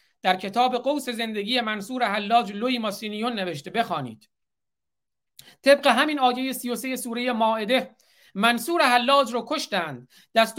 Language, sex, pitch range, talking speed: Persian, male, 185-245 Hz, 120 wpm